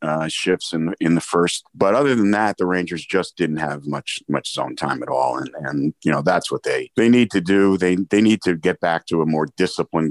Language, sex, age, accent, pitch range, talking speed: English, male, 50-69, American, 75-90 Hz, 250 wpm